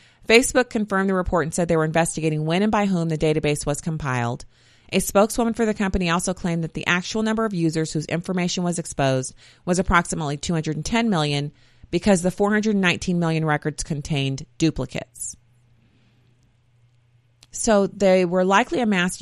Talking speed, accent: 155 wpm, American